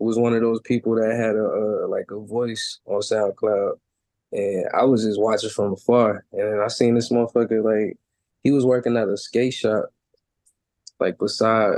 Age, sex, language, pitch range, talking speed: 20-39, male, English, 110-150 Hz, 185 wpm